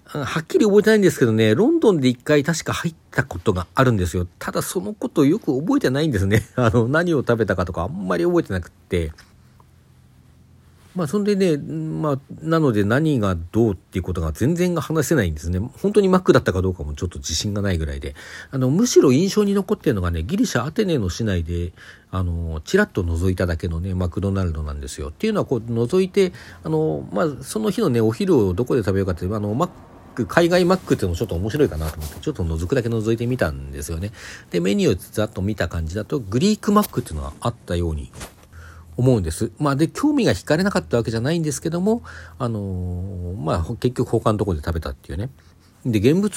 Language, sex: Japanese, male